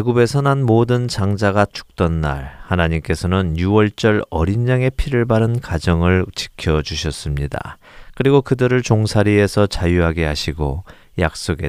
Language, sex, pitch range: Korean, male, 80-110 Hz